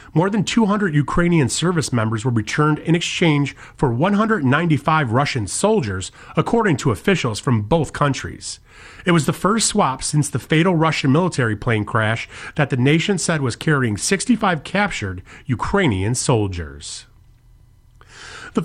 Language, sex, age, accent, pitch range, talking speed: English, male, 40-59, American, 110-180 Hz, 140 wpm